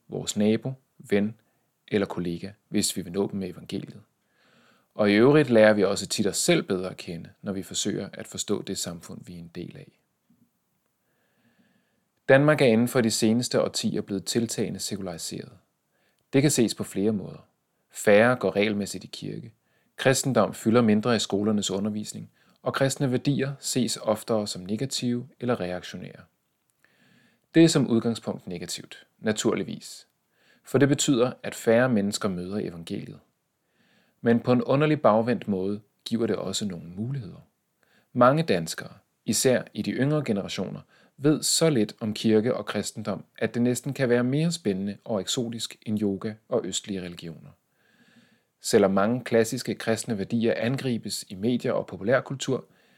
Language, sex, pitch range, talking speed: Danish, male, 100-130 Hz, 155 wpm